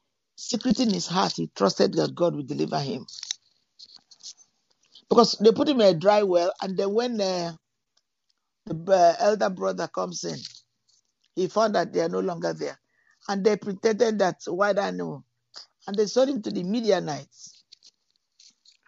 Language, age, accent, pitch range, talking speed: English, 50-69, Nigerian, 180-230 Hz, 160 wpm